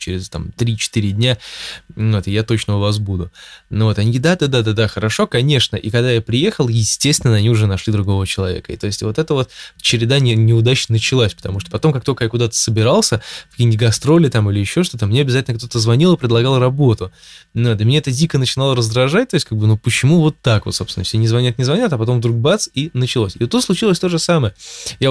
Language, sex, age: Russian, male, 20-39